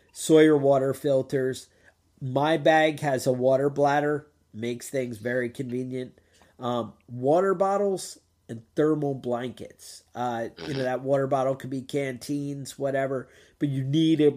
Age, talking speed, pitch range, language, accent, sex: 40-59, 140 wpm, 125-150 Hz, English, American, male